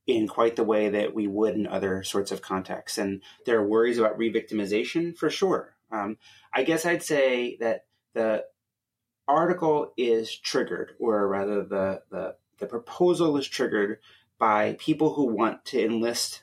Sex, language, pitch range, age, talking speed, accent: male, English, 105-140 Hz, 30-49, 155 wpm, American